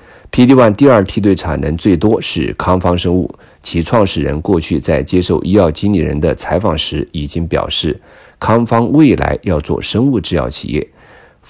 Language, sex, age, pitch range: Chinese, male, 50-69, 75-100 Hz